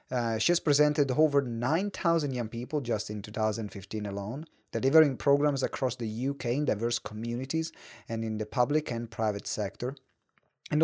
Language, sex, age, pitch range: English, male, 30-49, 110-150 Hz